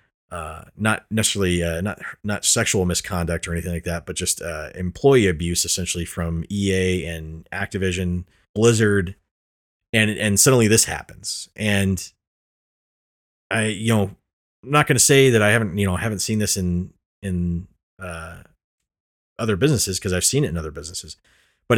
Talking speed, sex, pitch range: 165 wpm, male, 90-115 Hz